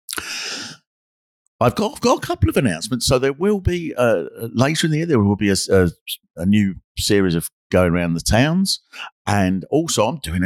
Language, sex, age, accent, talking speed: English, male, 50-69, British, 195 wpm